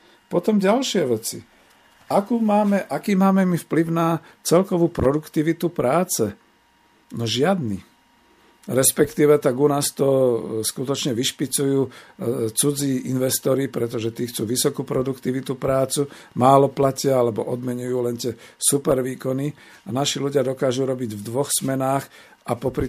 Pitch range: 120-155 Hz